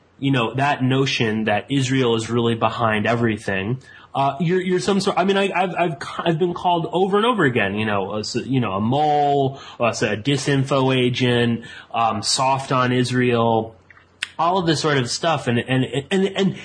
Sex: male